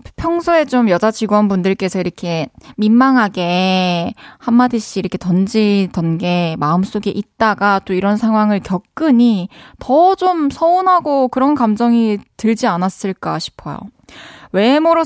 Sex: female